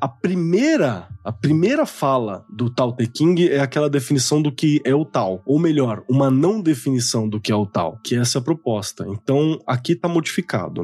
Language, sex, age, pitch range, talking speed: Portuguese, male, 20-39, 115-165 Hz, 200 wpm